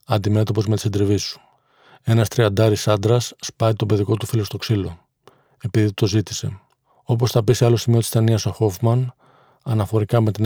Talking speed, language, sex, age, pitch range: 180 wpm, Greek, male, 40-59, 105-120 Hz